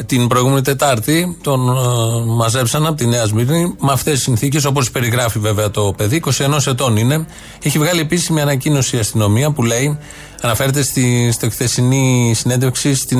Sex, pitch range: male, 115-150 Hz